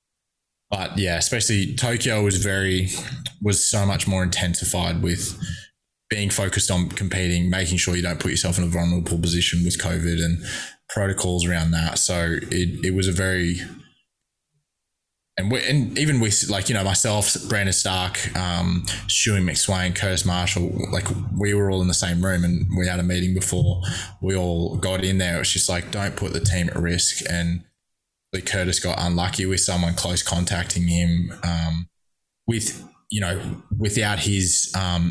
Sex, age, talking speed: male, 20-39, 165 wpm